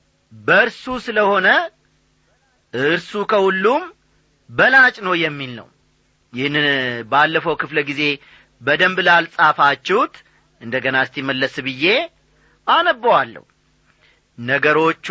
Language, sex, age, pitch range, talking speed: Amharic, male, 40-59, 150-250 Hz, 75 wpm